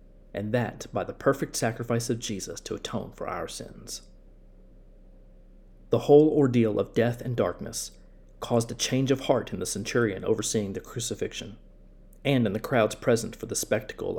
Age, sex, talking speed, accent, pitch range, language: 40-59, male, 165 wpm, American, 90-130 Hz, English